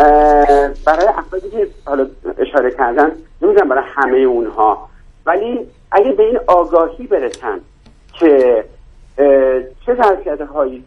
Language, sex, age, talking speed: Persian, male, 50-69, 110 wpm